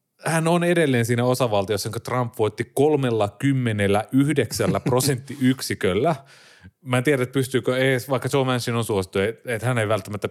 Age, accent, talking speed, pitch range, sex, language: 30-49, native, 155 wpm, 100-130 Hz, male, Finnish